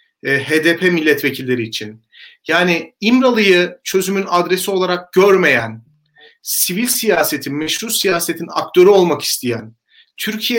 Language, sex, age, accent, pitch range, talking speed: Turkish, male, 40-59, native, 170-225 Hz, 95 wpm